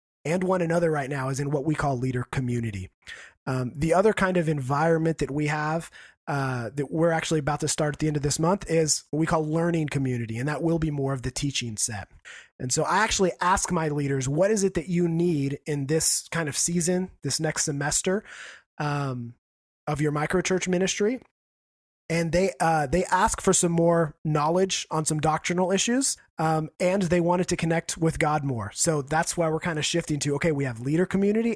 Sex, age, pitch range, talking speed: male, 30-49, 140-175 Hz, 210 wpm